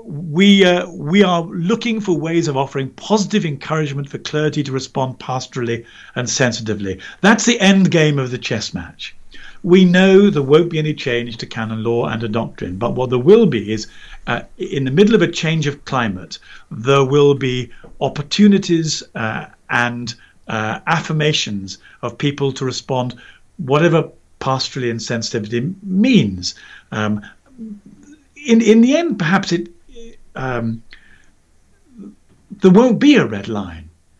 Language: English